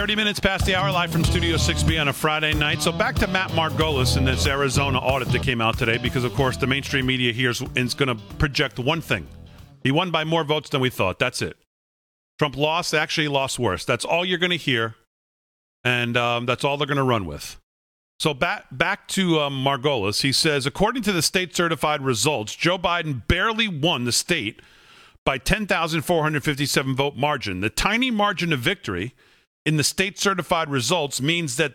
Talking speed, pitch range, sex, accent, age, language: 195 wpm, 130-185 Hz, male, American, 40-59, English